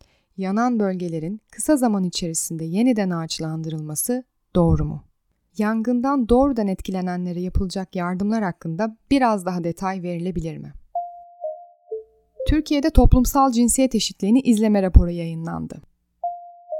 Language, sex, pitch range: Turkish, female, 185-260 Hz